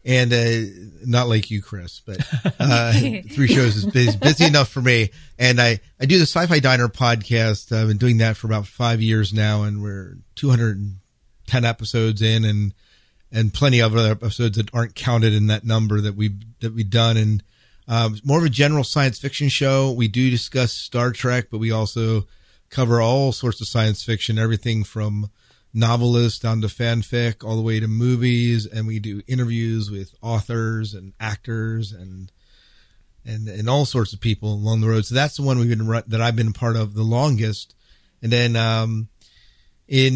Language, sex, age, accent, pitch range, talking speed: English, male, 40-59, American, 110-120 Hz, 185 wpm